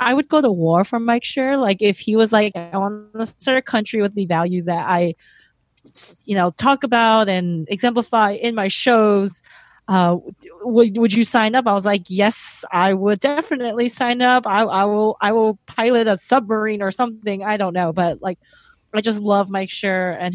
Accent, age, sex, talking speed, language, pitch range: American, 30-49, female, 205 wpm, English, 180-240 Hz